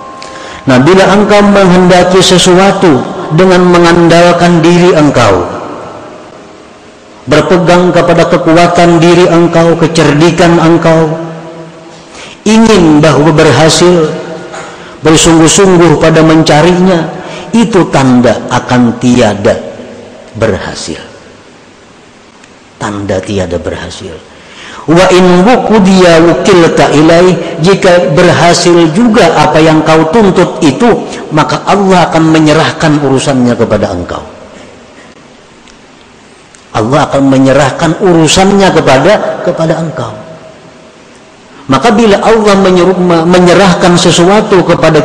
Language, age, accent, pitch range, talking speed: Indonesian, 50-69, native, 130-180 Hz, 85 wpm